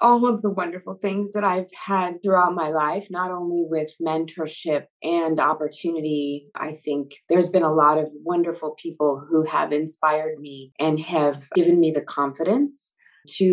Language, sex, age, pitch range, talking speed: English, female, 30-49, 150-175 Hz, 165 wpm